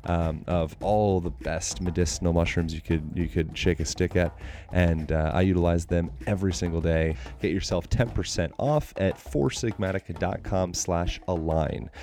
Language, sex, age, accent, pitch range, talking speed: English, male, 30-49, American, 85-100 Hz, 155 wpm